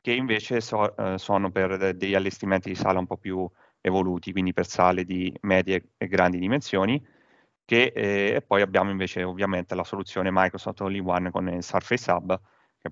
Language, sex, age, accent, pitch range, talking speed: Italian, male, 30-49, native, 90-100 Hz, 170 wpm